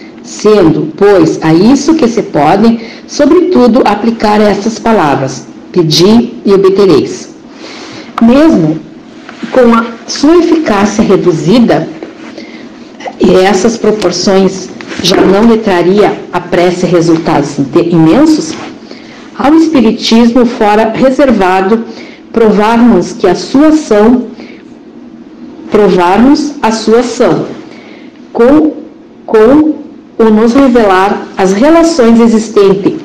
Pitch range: 205-285 Hz